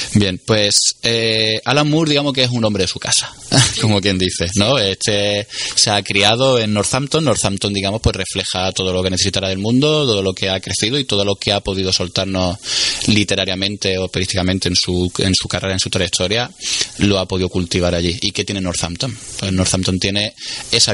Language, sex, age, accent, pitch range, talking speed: Spanish, male, 20-39, Spanish, 95-115 Hz, 195 wpm